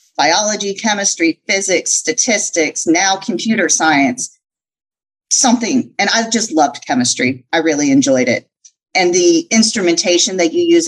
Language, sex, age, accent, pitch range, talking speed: English, female, 40-59, American, 175-265 Hz, 125 wpm